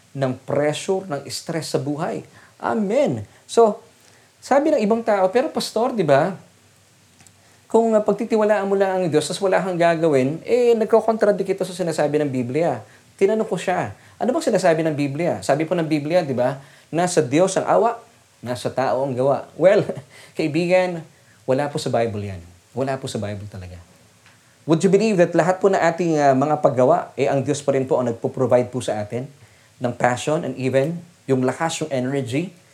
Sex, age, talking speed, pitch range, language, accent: male, 20-39, 175 wpm, 130-180 Hz, English, Filipino